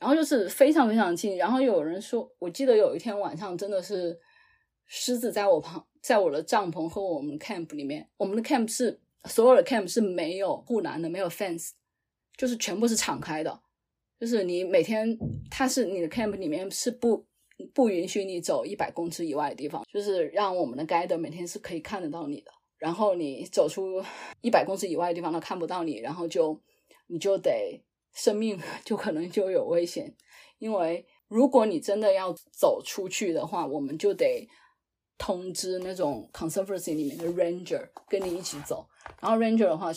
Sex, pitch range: female, 170-235 Hz